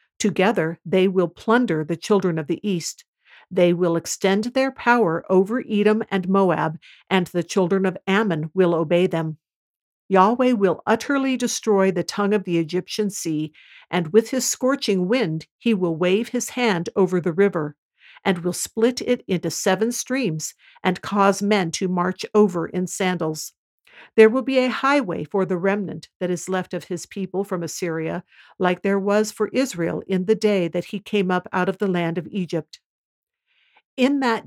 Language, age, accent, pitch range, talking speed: English, 50-69, American, 170-215 Hz, 175 wpm